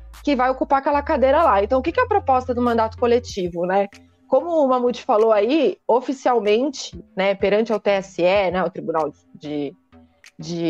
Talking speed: 175 wpm